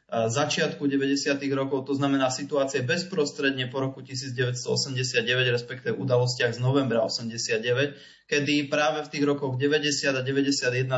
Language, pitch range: Slovak, 120-140 Hz